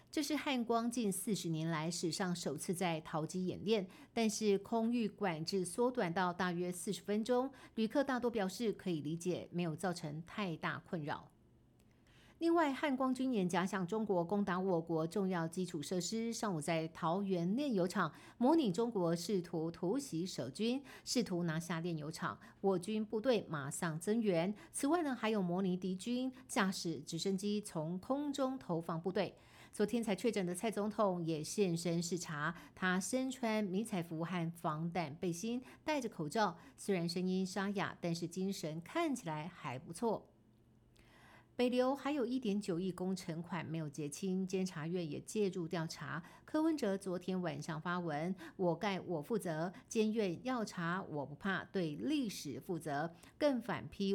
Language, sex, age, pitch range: Chinese, female, 50-69, 170-215 Hz